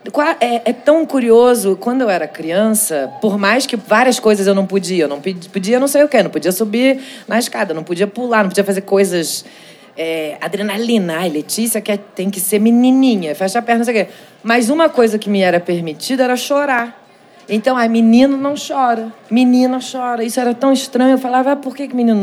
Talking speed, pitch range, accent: 205 wpm, 190-235 Hz, Brazilian